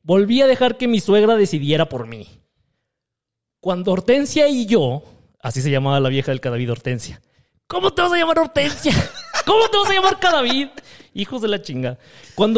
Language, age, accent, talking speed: Spanish, 30-49, Mexican, 180 wpm